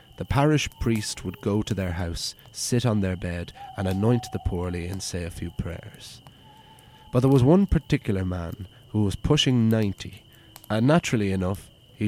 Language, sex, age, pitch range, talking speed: English, male, 30-49, 95-125 Hz, 175 wpm